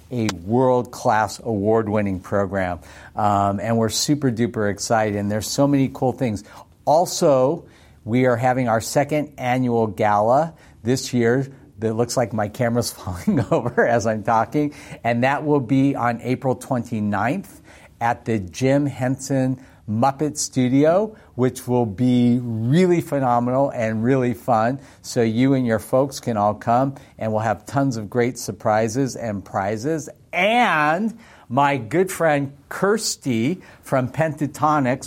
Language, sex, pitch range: English, male, 110-140 Hz